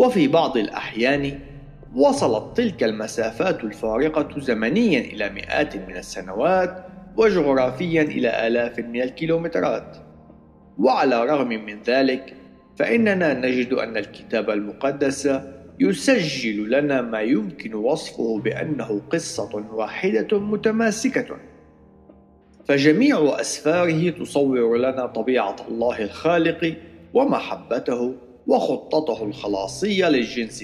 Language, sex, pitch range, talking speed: Arabic, male, 115-165 Hz, 90 wpm